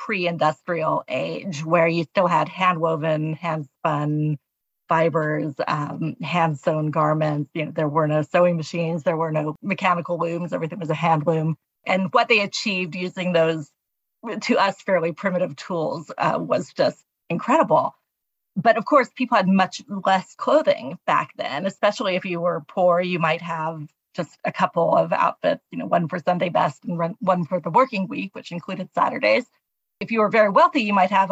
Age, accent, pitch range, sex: 30-49, American, 170-205 Hz, female